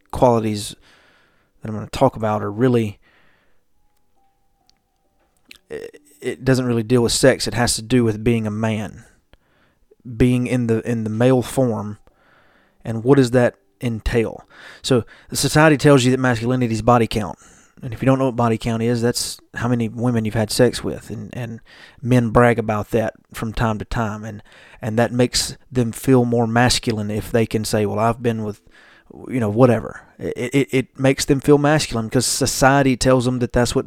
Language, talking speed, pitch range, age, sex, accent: English, 185 wpm, 110-130 Hz, 30-49, male, American